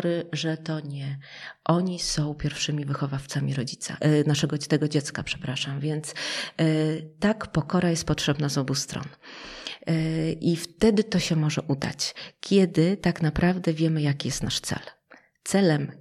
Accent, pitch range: native, 150-175 Hz